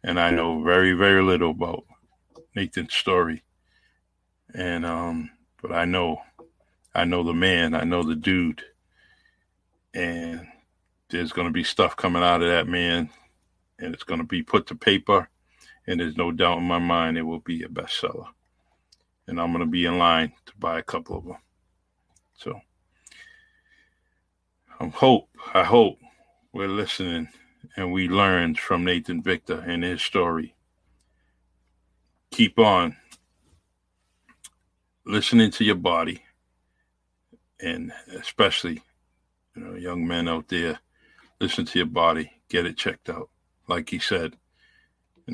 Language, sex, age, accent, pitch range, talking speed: English, male, 50-69, American, 80-90 Hz, 145 wpm